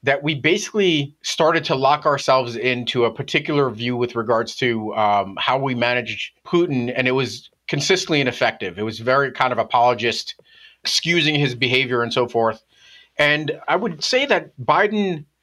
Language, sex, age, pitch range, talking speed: English, male, 30-49, 125-155 Hz, 165 wpm